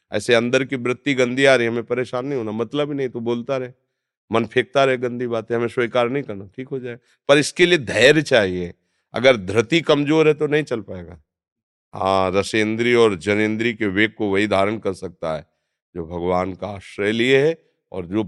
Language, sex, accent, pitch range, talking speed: Hindi, male, native, 100-135 Hz, 205 wpm